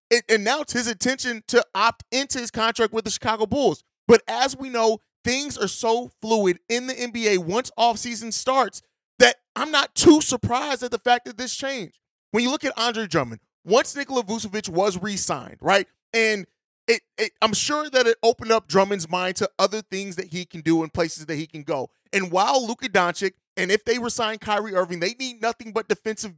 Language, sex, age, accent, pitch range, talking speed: English, male, 30-49, American, 195-240 Hz, 205 wpm